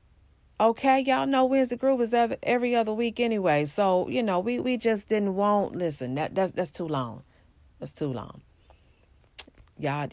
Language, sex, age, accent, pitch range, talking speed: English, female, 40-59, American, 130-200 Hz, 165 wpm